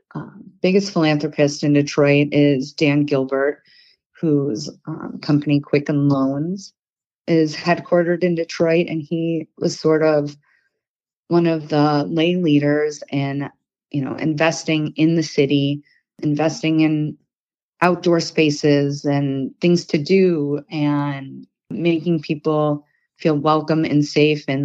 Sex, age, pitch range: female, 30-49, 145-170 Hz